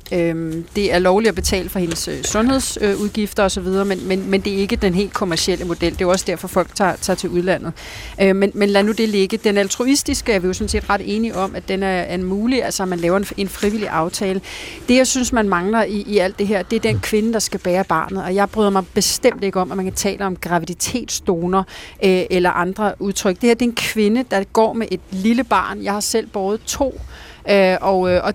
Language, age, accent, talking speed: Danish, 30-49, native, 235 wpm